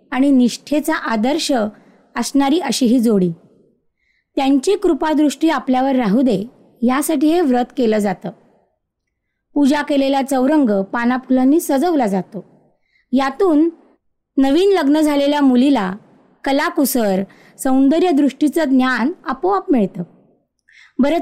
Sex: female